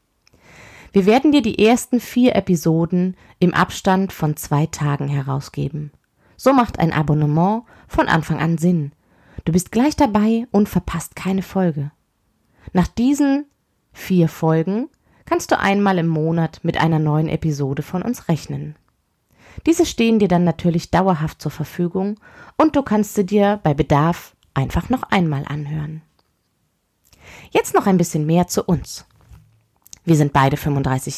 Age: 20-39